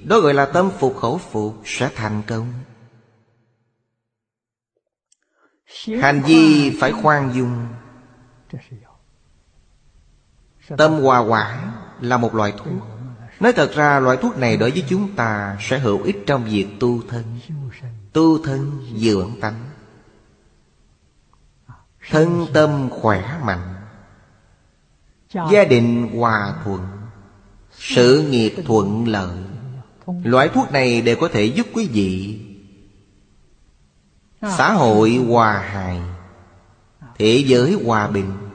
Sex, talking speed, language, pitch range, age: male, 110 wpm, Vietnamese, 100-130 Hz, 30-49